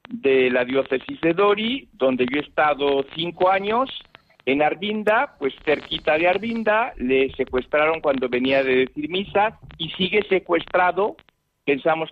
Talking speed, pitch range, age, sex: 140 wpm, 140-195 Hz, 50-69, male